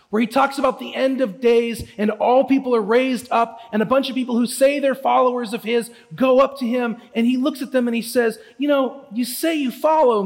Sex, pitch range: male, 185-250 Hz